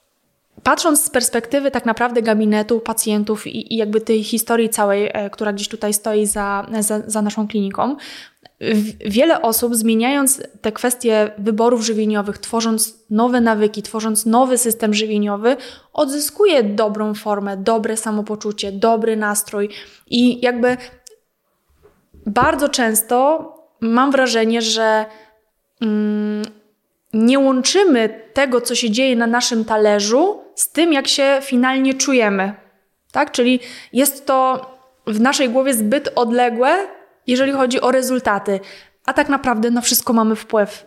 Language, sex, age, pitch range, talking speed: Polish, female, 20-39, 215-260 Hz, 125 wpm